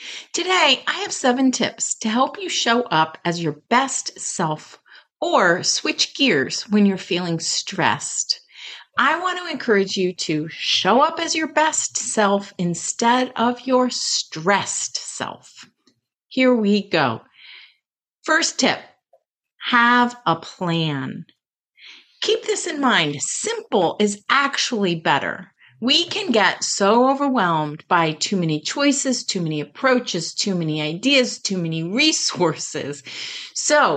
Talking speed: 130 wpm